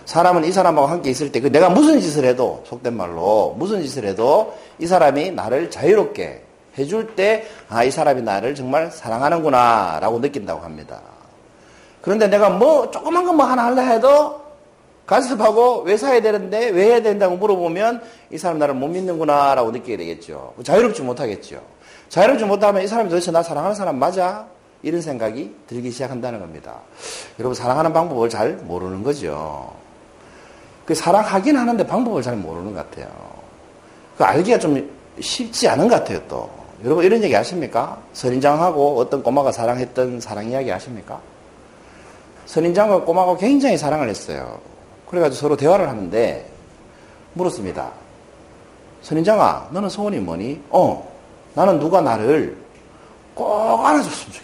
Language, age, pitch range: Korean, 40-59, 135-215 Hz